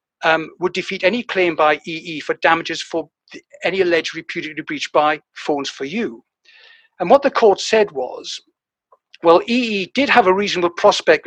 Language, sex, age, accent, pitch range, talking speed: English, male, 60-79, British, 165-255 Hz, 170 wpm